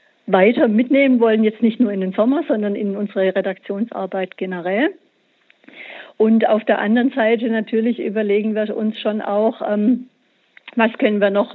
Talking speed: 155 wpm